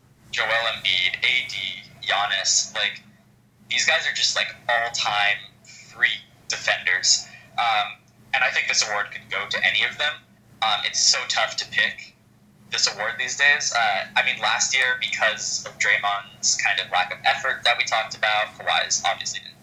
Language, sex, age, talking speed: English, male, 10-29, 170 wpm